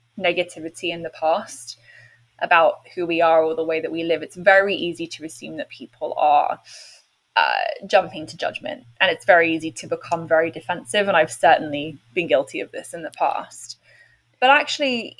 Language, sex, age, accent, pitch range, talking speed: English, female, 10-29, British, 175-235 Hz, 180 wpm